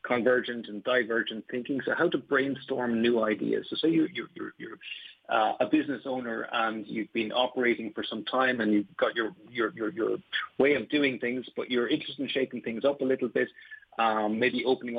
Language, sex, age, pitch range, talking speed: English, male, 40-59, 110-135 Hz, 200 wpm